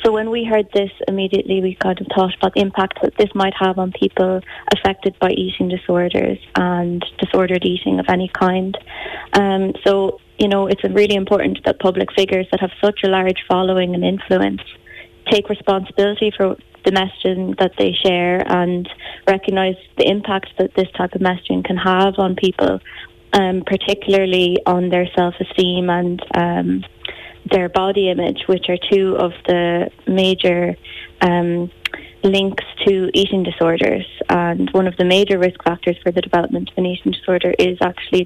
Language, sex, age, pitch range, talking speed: English, female, 20-39, 180-195 Hz, 165 wpm